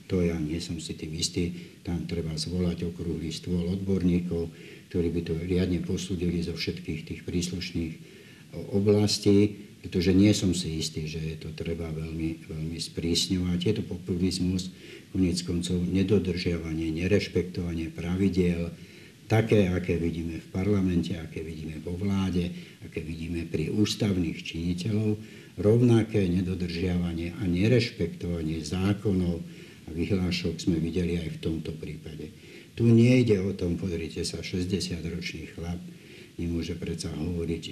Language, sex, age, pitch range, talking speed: Slovak, male, 60-79, 80-95 Hz, 130 wpm